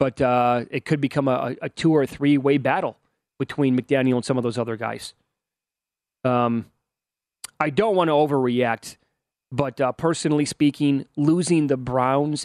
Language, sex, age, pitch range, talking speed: English, male, 30-49, 125-150 Hz, 155 wpm